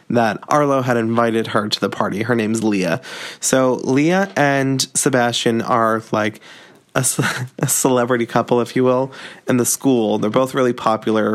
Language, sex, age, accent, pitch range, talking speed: English, male, 20-39, American, 110-130 Hz, 160 wpm